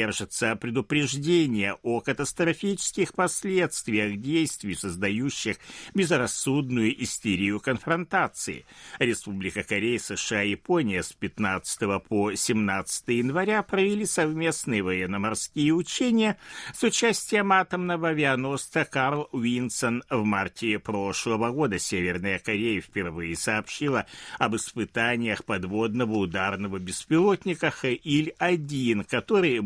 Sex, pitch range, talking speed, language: male, 105-160 Hz, 90 wpm, Russian